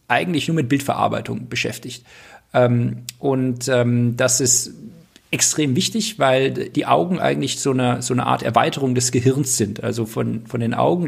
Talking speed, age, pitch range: 145 wpm, 50-69, 115-155 Hz